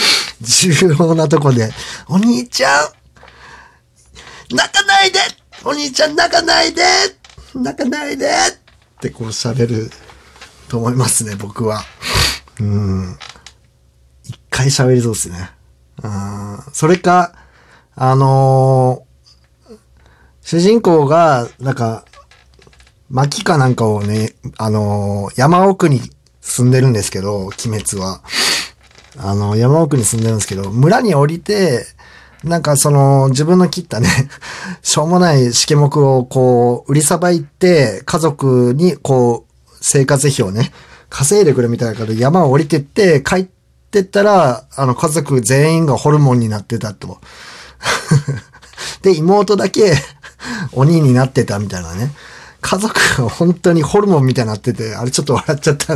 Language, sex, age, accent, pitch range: Japanese, male, 50-69, native, 110-170 Hz